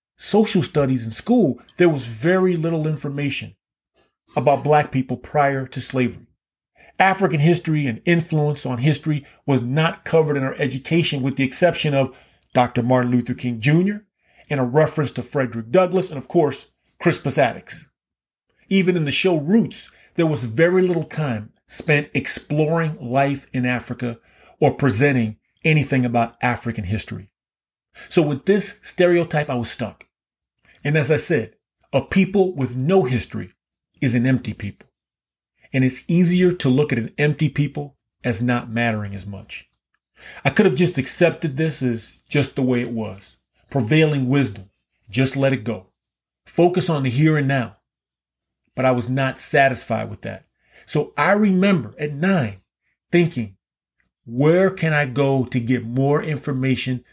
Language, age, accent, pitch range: English, 40-59, American, 120-155 Hz